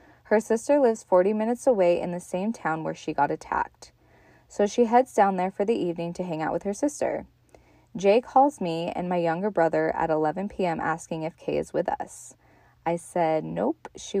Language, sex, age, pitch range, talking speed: English, female, 20-39, 165-215 Hz, 205 wpm